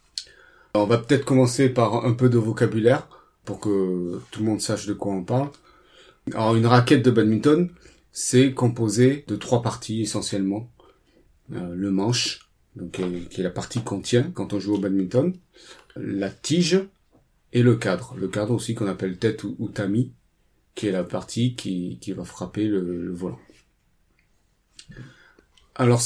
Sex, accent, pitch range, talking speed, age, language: male, French, 105-125 Hz, 170 wpm, 40-59, French